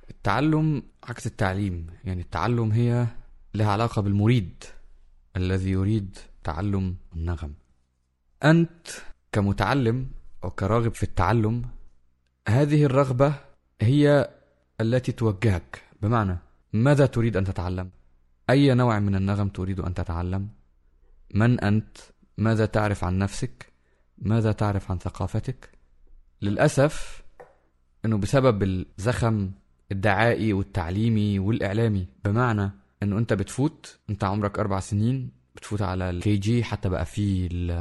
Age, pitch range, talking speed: 20-39, 90-120 Hz, 110 wpm